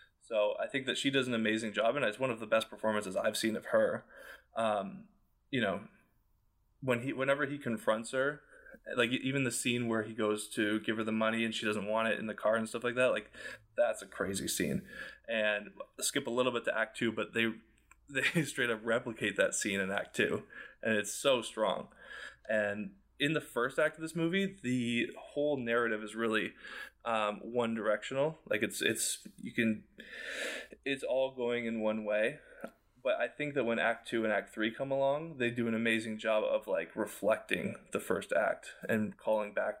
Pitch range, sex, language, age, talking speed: 110-125 Hz, male, English, 20-39, 205 wpm